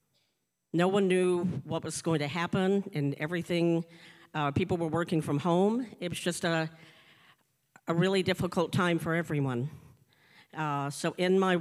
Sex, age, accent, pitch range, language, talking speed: female, 50-69, American, 150-175 Hz, English, 155 wpm